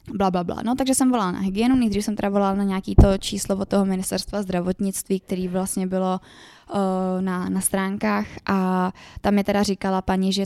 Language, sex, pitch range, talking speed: Czech, female, 190-205 Hz, 200 wpm